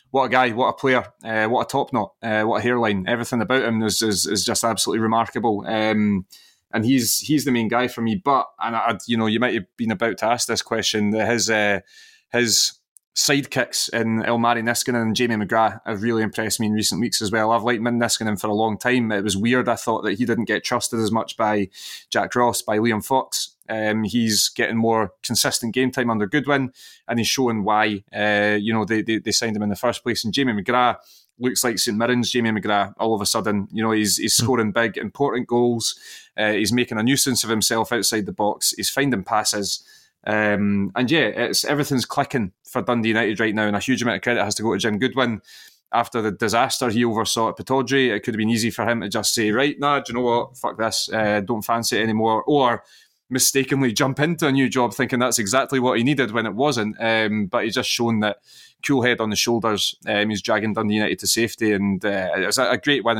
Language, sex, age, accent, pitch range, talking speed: English, male, 20-39, British, 110-125 Hz, 235 wpm